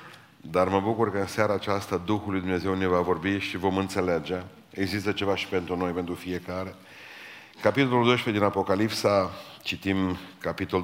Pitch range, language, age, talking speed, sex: 90-110 Hz, Romanian, 40-59, 155 wpm, male